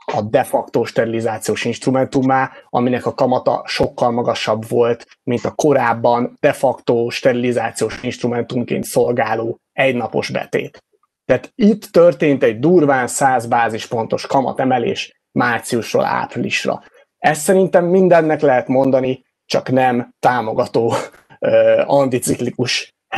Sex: male